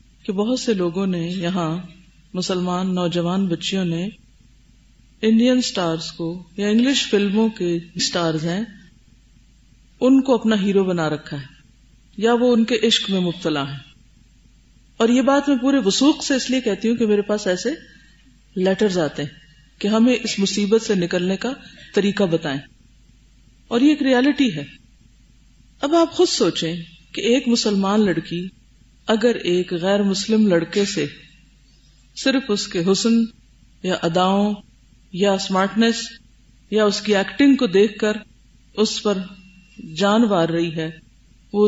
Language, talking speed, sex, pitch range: Urdu, 145 wpm, female, 180-230 Hz